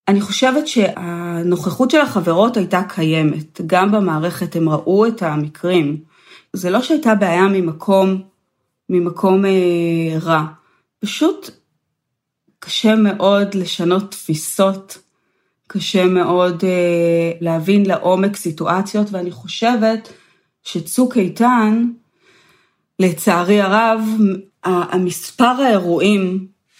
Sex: female